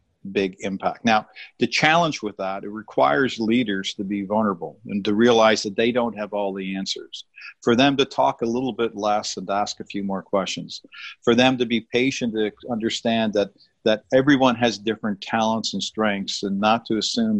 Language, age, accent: English, 50-69, American